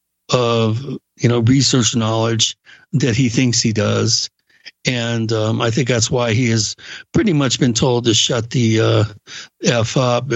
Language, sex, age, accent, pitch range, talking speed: English, male, 60-79, American, 115-130 Hz, 160 wpm